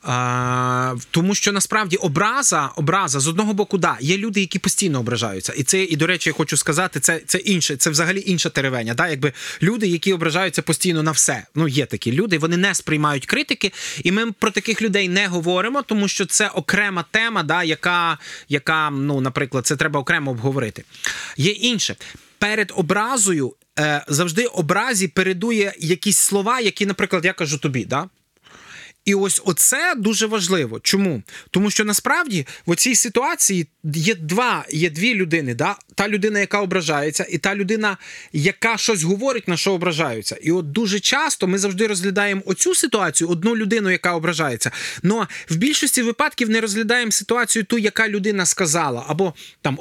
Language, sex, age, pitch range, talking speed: Ukrainian, male, 20-39, 160-215 Hz, 170 wpm